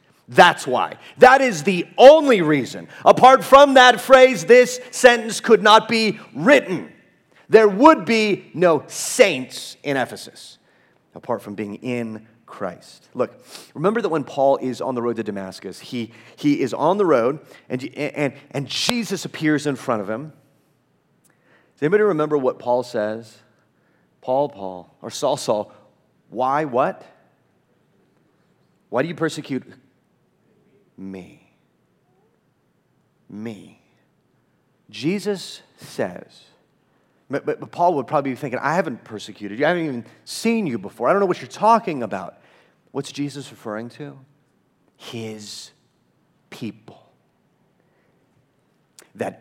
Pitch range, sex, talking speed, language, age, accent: 120-195 Hz, male, 130 wpm, English, 30-49, American